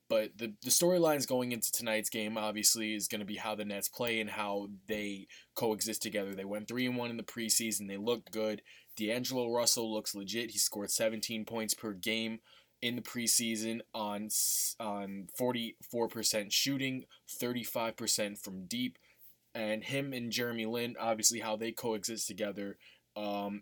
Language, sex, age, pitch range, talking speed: English, male, 20-39, 105-120 Hz, 160 wpm